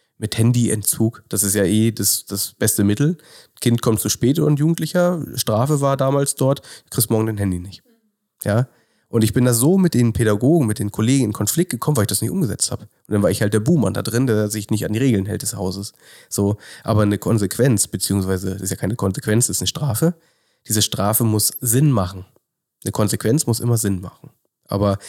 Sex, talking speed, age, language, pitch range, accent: male, 215 wpm, 30-49, German, 100-125 Hz, German